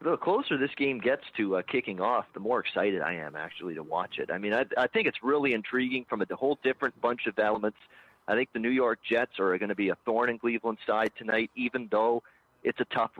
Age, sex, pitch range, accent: 40-59, male, 105-120 Hz, American